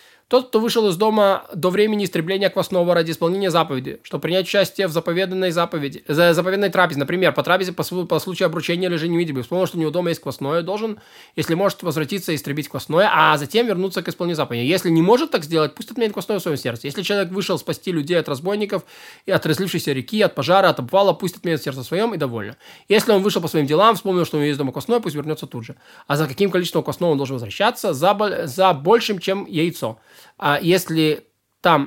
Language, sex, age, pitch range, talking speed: Russian, male, 20-39, 155-200 Hz, 215 wpm